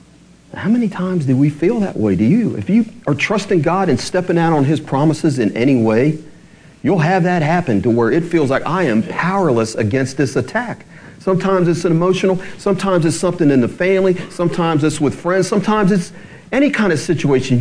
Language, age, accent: English, 40-59, American